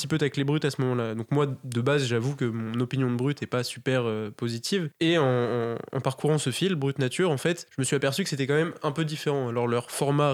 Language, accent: French, French